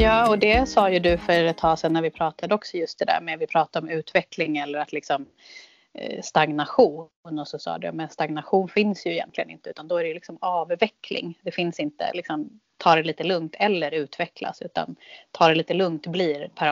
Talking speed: 210 wpm